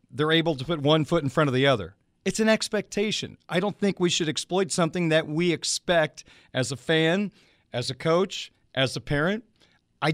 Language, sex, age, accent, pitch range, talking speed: English, male, 40-59, American, 140-180 Hz, 200 wpm